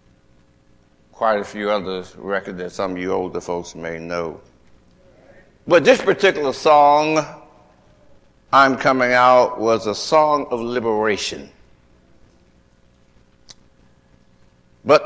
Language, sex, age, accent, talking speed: English, male, 60-79, American, 105 wpm